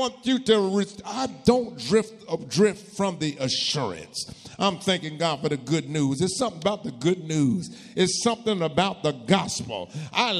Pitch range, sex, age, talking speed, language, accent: 150-200 Hz, male, 50-69, 175 wpm, English, American